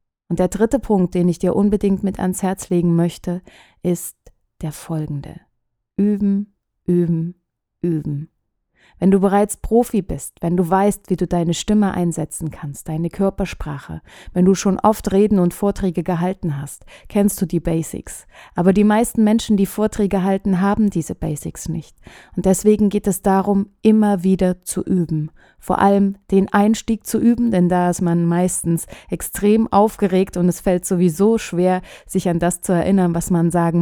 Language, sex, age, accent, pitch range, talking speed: German, female, 30-49, German, 170-200 Hz, 165 wpm